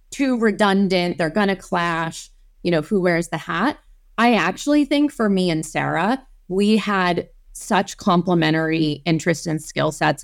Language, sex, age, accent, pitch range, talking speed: English, female, 30-49, American, 175-220 Hz, 160 wpm